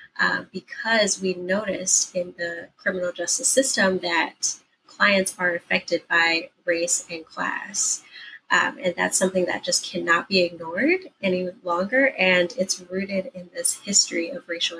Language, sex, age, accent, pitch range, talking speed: English, female, 20-39, American, 180-210 Hz, 145 wpm